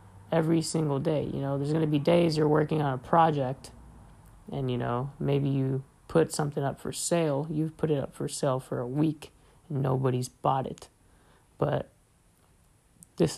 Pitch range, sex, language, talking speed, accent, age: 120-160 Hz, male, English, 180 wpm, American, 20-39